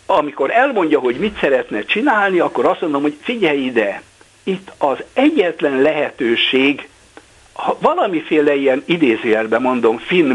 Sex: male